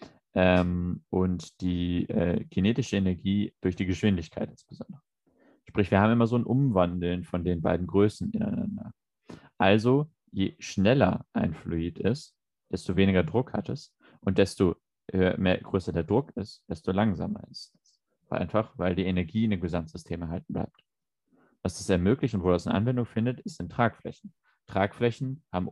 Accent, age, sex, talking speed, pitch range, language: German, 30-49, male, 160 wpm, 90-110 Hz, German